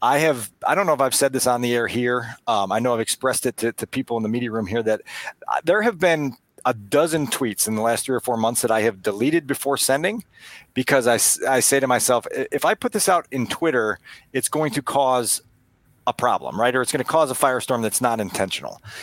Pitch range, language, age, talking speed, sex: 130-195 Hz, English, 40-59, 245 wpm, male